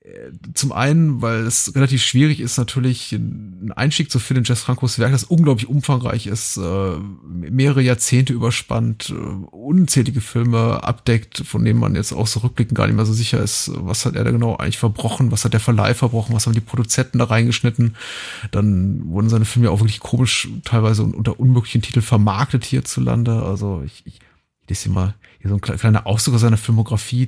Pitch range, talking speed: 110-130 Hz, 190 wpm